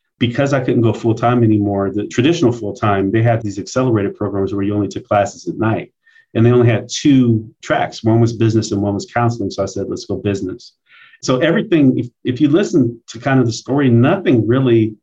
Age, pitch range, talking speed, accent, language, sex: 40-59, 100-120 Hz, 210 wpm, American, English, male